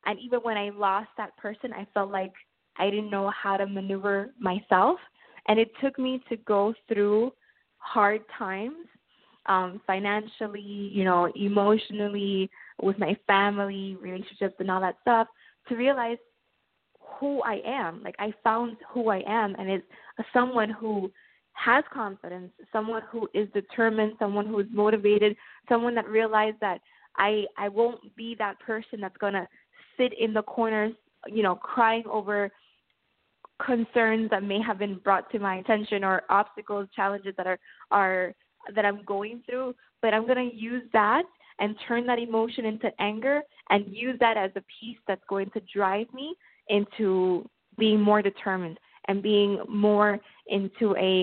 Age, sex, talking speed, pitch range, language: 20-39, female, 155 wpm, 195-225 Hz, English